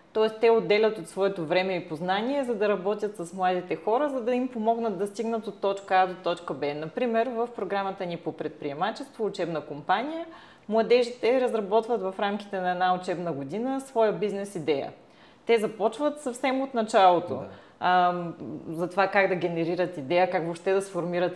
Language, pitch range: Bulgarian, 170-215 Hz